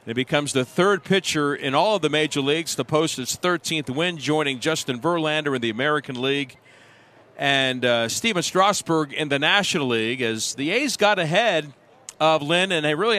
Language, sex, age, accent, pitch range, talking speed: English, male, 50-69, American, 135-165 Hz, 185 wpm